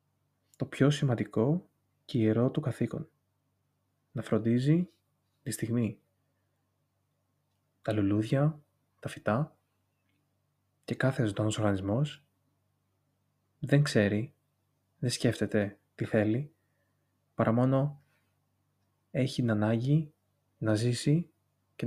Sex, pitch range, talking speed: male, 105-135 Hz, 90 wpm